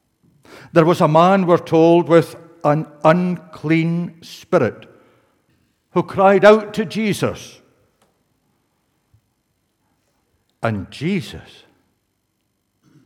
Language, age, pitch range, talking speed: English, 60-79, 120-160 Hz, 80 wpm